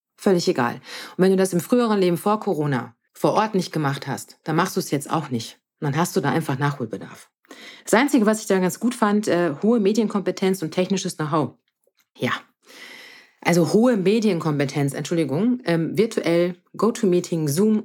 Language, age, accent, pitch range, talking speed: German, 40-59, German, 155-205 Hz, 180 wpm